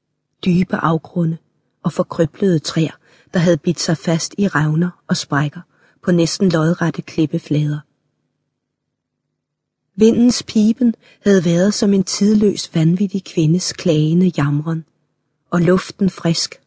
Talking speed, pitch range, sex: 115 wpm, 155-185 Hz, female